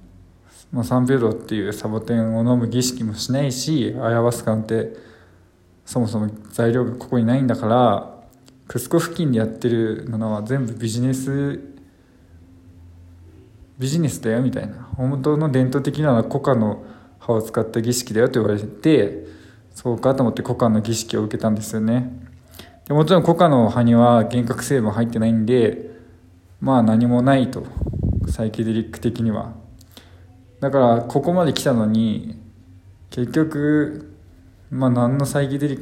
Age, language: 20-39, Japanese